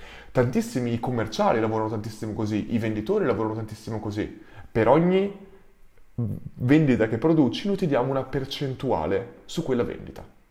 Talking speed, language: 130 wpm, Italian